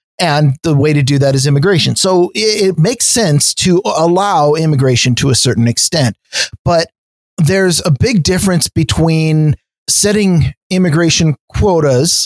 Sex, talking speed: male, 135 wpm